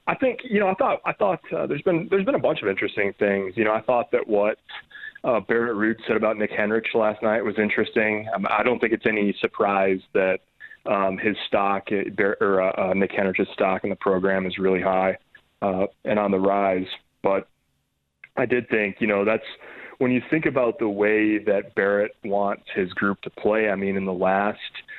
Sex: male